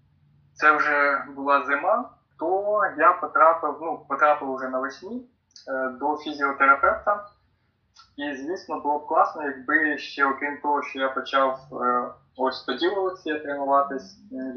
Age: 20-39